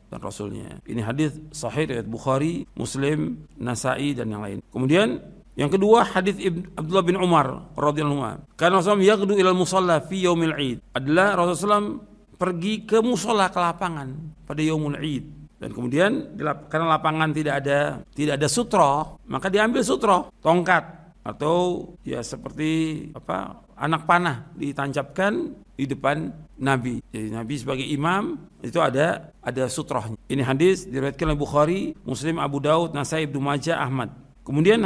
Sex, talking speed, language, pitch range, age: male, 135 wpm, Indonesian, 140-180 Hz, 50-69